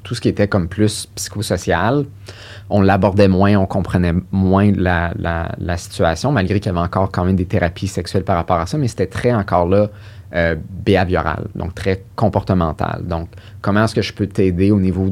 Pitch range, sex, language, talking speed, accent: 90-105 Hz, male, English, 200 wpm, Canadian